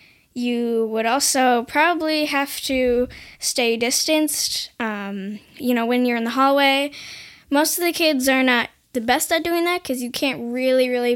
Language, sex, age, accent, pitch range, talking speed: English, female, 10-29, American, 230-275 Hz, 170 wpm